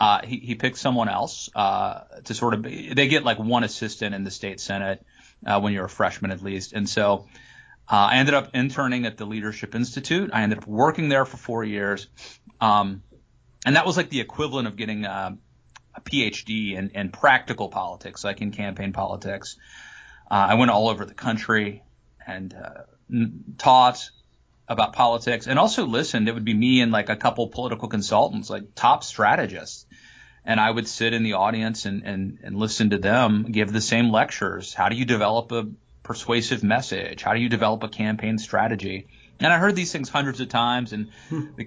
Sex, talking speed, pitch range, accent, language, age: male, 195 wpm, 100-125 Hz, American, English, 30-49